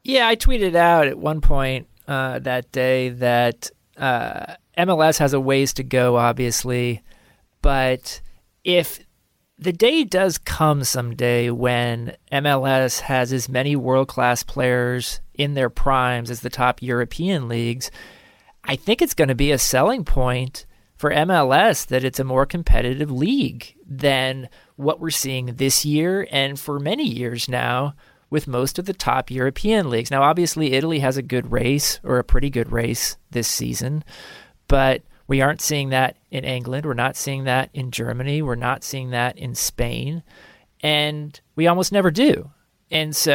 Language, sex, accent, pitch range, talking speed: English, male, American, 125-150 Hz, 160 wpm